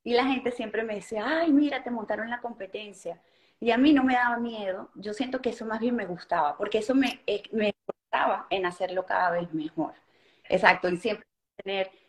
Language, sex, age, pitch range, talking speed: Spanish, female, 30-49, 185-220 Hz, 205 wpm